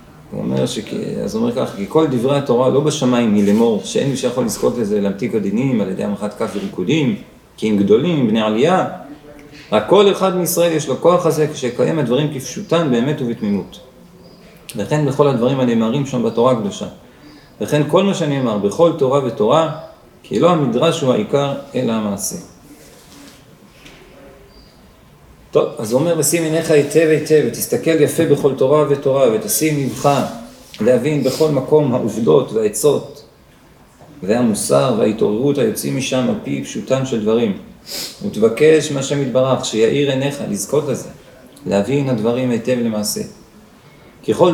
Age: 40-59